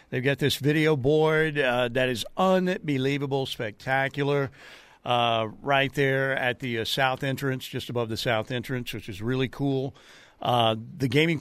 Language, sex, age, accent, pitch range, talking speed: English, male, 50-69, American, 125-145 Hz, 160 wpm